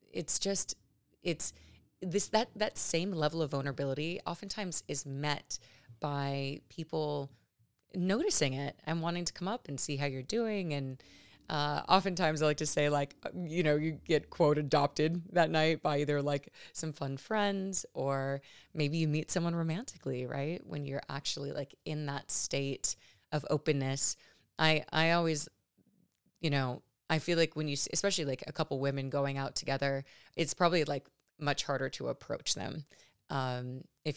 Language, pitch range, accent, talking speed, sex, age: English, 135-170 Hz, American, 165 wpm, female, 30-49